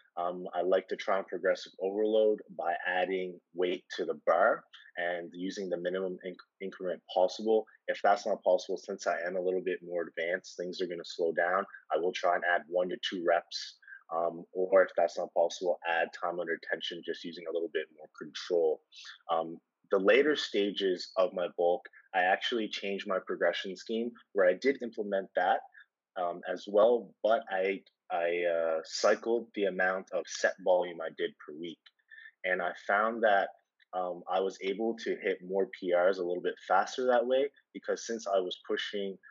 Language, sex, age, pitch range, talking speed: English, male, 30-49, 85-115 Hz, 185 wpm